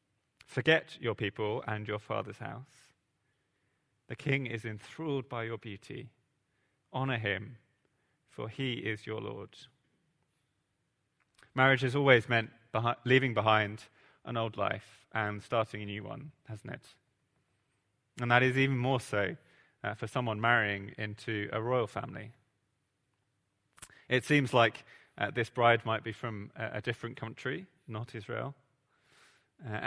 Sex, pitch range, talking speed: male, 110-135 Hz, 130 wpm